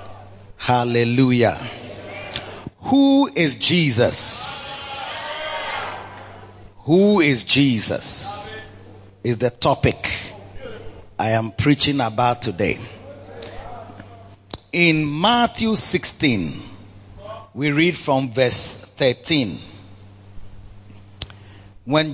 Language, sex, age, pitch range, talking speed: English, male, 40-59, 105-155 Hz, 65 wpm